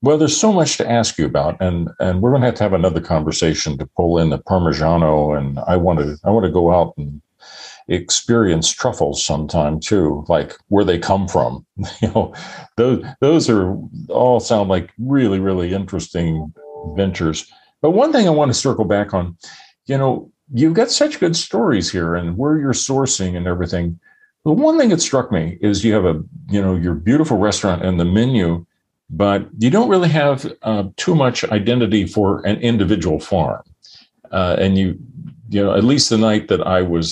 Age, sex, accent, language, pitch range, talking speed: 50-69, male, American, English, 85-120 Hz, 190 wpm